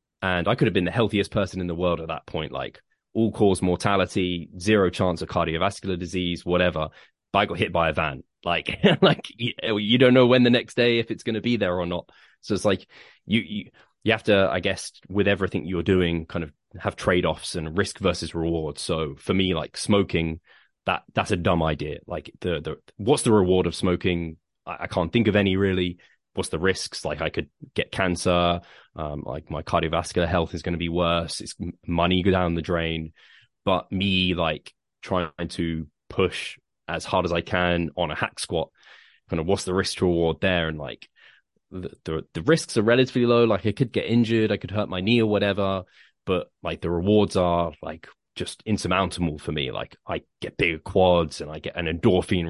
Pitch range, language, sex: 85-100 Hz, English, male